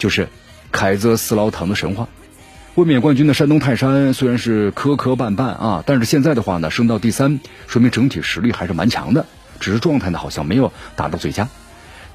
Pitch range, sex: 100-130 Hz, male